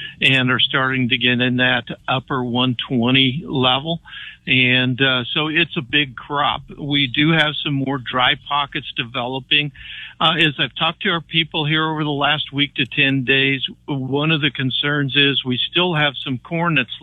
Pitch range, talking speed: 130-145 Hz, 180 wpm